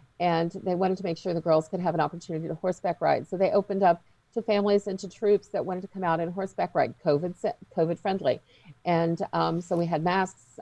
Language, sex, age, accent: English, female, 50-69, American